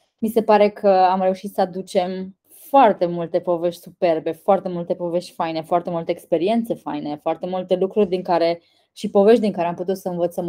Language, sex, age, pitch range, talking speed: Romanian, female, 20-39, 170-205 Hz, 190 wpm